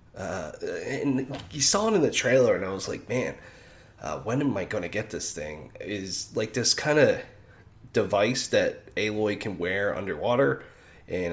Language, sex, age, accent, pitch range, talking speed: English, male, 30-49, American, 95-120 Hz, 180 wpm